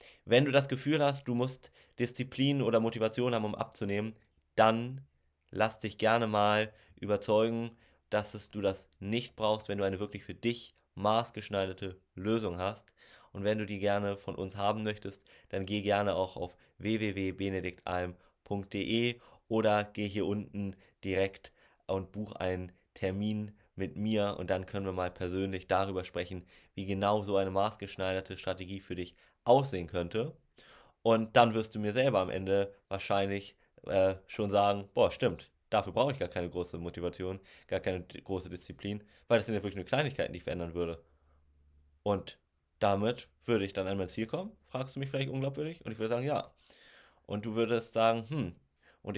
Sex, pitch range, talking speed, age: male, 95-110 Hz, 170 wpm, 20-39